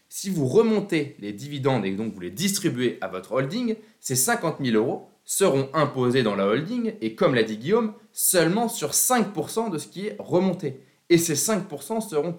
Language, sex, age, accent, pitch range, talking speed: French, male, 20-39, French, 115-165 Hz, 190 wpm